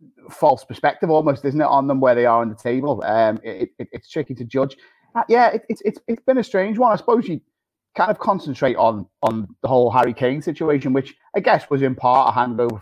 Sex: male